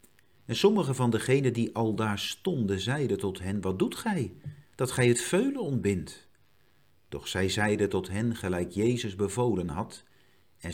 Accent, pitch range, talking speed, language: Dutch, 95-130 Hz, 160 wpm, Dutch